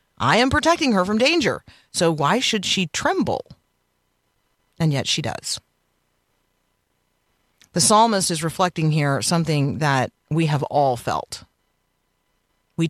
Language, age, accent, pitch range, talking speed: English, 40-59, American, 130-180 Hz, 125 wpm